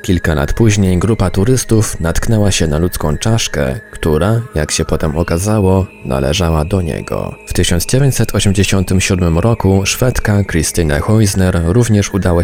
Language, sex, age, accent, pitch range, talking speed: Polish, male, 20-39, native, 80-105 Hz, 125 wpm